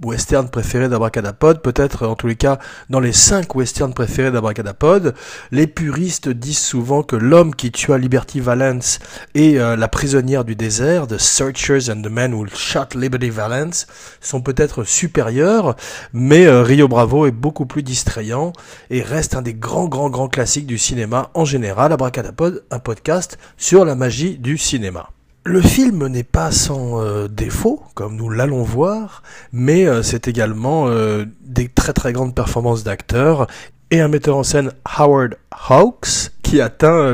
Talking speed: 165 wpm